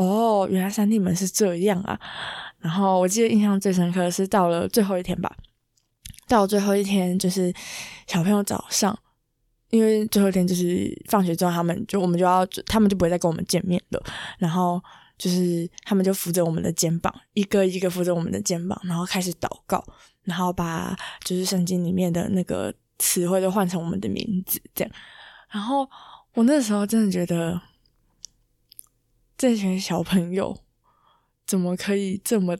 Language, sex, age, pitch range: Chinese, female, 20-39, 175-200 Hz